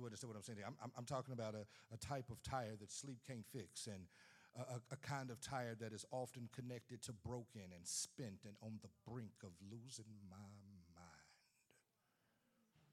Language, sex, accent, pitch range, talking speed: English, male, American, 100-120 Hz, 190 wpm